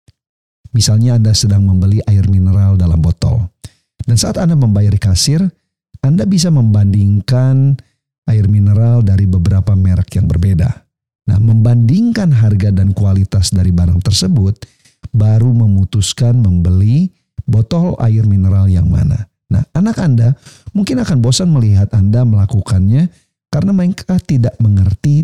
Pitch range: 100-125 Hz